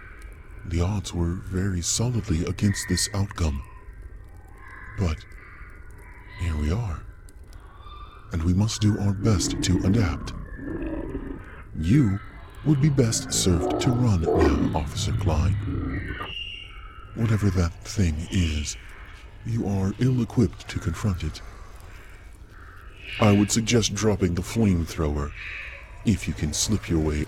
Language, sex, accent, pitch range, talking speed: English, female, American, 85-105 Hz, 115 wpm